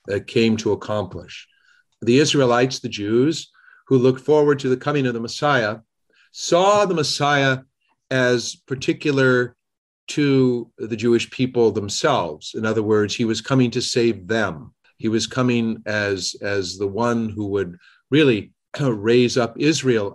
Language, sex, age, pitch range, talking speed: English, male, 50-69, 100-130 Hz, 145 wpm